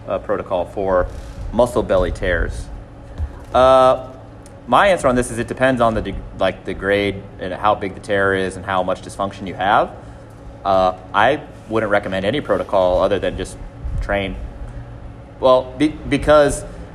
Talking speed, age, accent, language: 160 wpm, 30-49, American, English